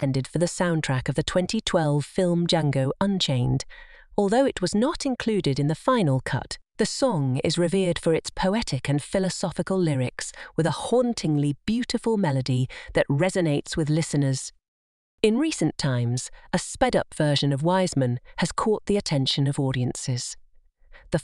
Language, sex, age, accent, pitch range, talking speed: English, female, 40-59, British, 140-200 Hz, 145 wpm